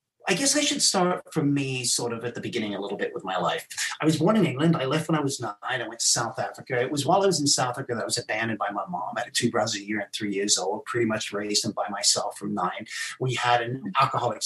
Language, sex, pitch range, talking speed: English, male, 115-155 Hz, 295 wpm